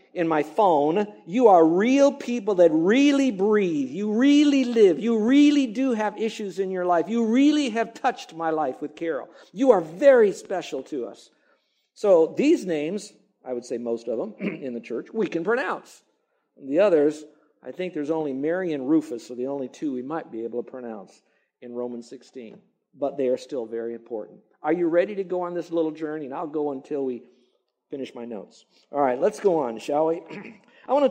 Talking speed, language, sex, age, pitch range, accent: 205 wpm, English, male, 50-69, 140-210 Hz, American